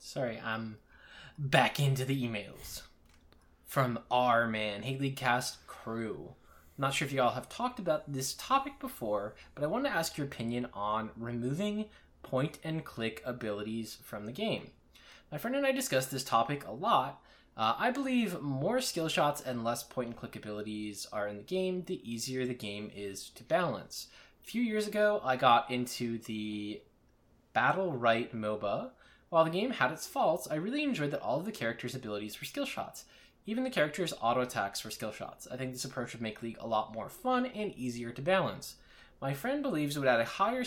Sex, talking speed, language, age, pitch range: male, 195 wpm, English, 10-29, 110-165 Hz